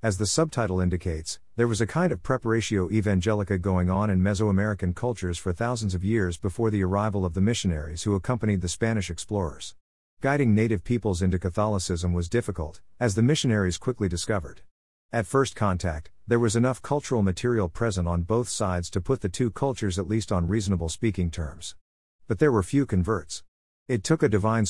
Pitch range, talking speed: 90-115 Hz, 180 wpm